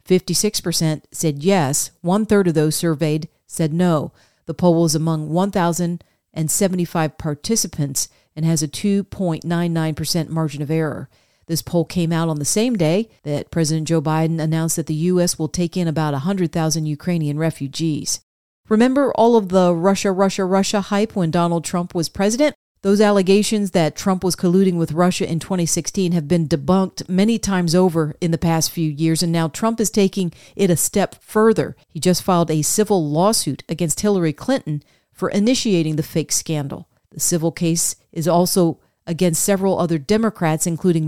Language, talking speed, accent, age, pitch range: English, 170 wpm, American, 40-59, 160-190 Hz